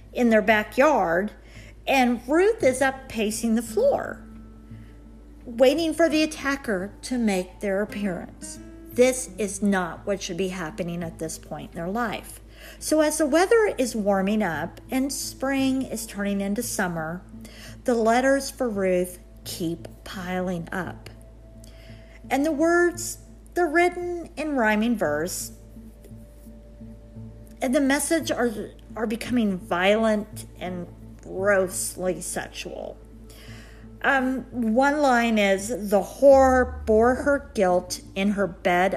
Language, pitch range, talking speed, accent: English, 160-245 Hz, 125 wpm, American